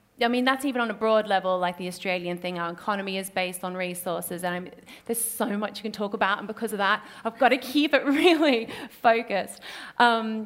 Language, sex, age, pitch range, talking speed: English, female, 30-49, 190-235 Hz, 220 wpm